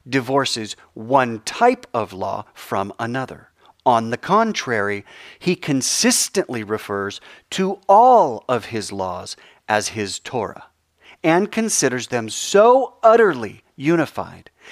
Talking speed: 110 wpm